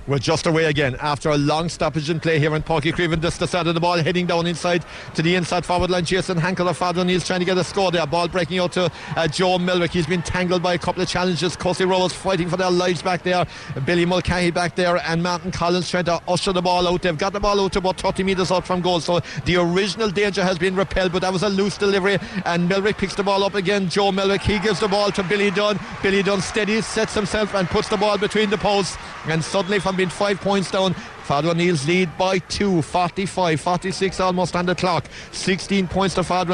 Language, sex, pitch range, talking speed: English, male, 175-195 Hz, 245 wpm